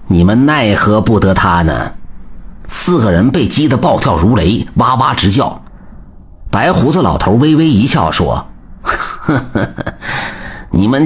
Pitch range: 85-105 Hz